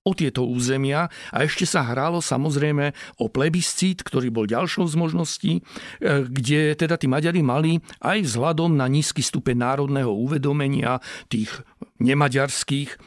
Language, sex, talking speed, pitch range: Slovak, male, 135 wpm, 120-150 Hz